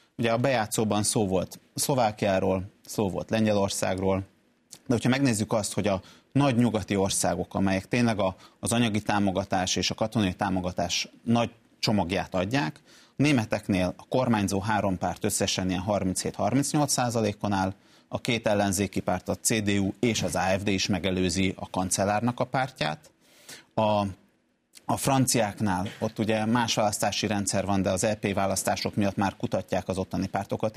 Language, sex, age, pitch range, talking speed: Hungarian, male, 30-49, 95-120 Hz, 145 wpm